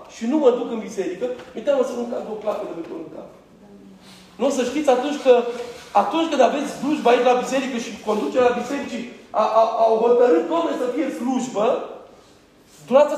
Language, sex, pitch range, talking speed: Romanian, male, 235-285 Hz, 175 wpm